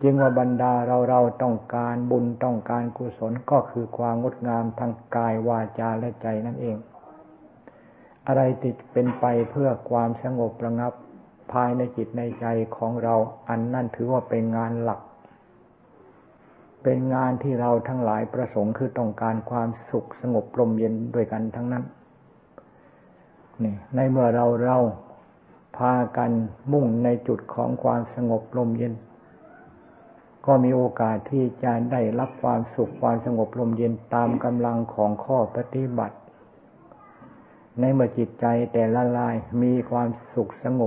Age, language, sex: 60-79, Thai, male